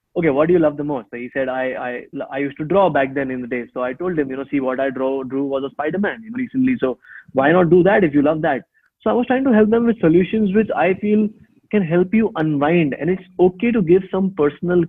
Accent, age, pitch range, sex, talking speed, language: Indian, 20-39, 135-180 Hz, male, 275 wpm, English